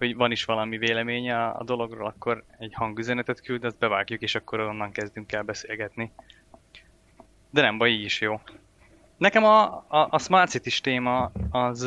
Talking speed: 170 wpm